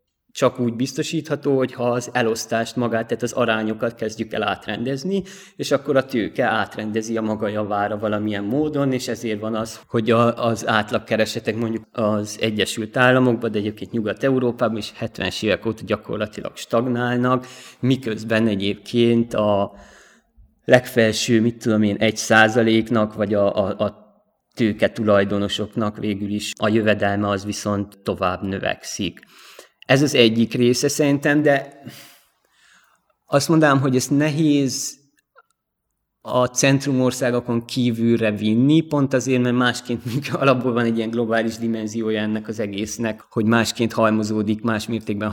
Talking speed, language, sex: 130 wpm, Hungarian, male